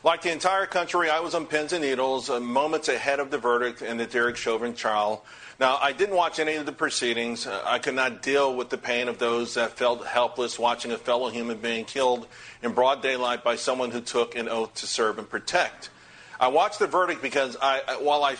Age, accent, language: 40-59, American, English